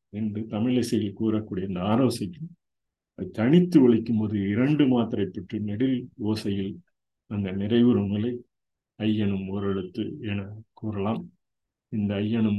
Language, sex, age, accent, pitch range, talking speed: Tamil, male, 50-69, native, 105-125 Hz, 110 wpm